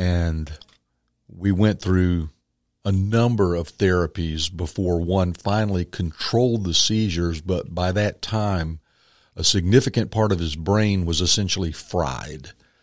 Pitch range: 85-110 Hz